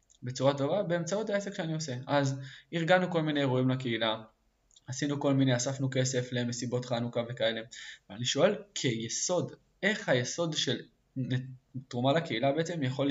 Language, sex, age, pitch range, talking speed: Hebrew, male, 20-39, 120-155 Hz, 135 wpm